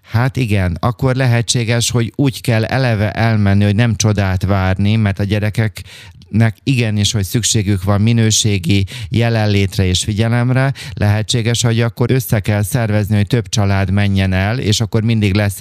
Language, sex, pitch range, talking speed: Hungarian, male, 100-120 Hz, 155 wpm